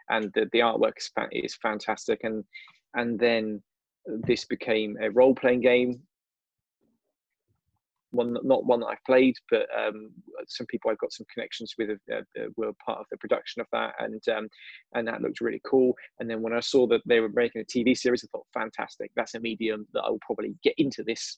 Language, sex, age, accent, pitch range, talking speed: English, male, 20-39, British, 115-175 Hz, 195 wpm